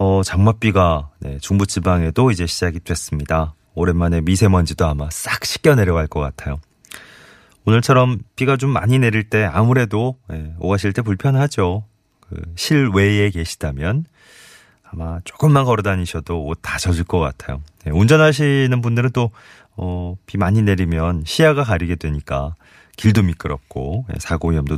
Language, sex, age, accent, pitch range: Korean, male, 30-49, native, 85-120 Hz